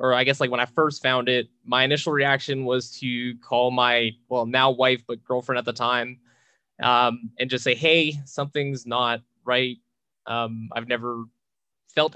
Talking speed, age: 180 wpm, 20-39